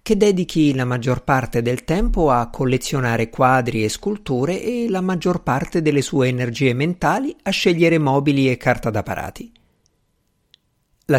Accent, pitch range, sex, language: native, 115-170 Hz, male, Italian